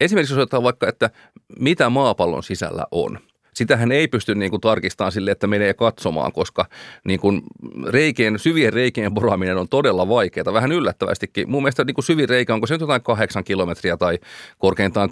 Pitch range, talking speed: 100-130 Hz, 160 wpm